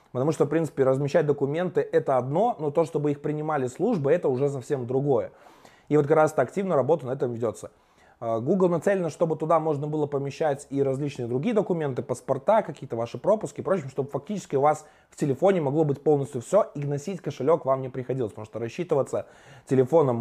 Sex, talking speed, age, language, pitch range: male, 190 wpm, 20-39, Russian, 120-155 Hz